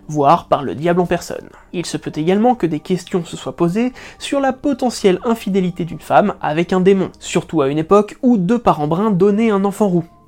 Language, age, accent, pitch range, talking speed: French, 20-39, French, 165-225 Hz, 215 wpm